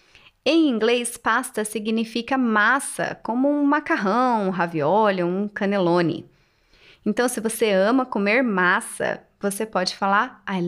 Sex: female